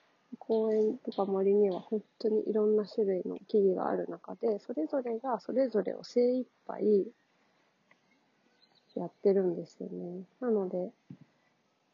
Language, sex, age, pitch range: Japanese, female, 40-59, 200-255 Hz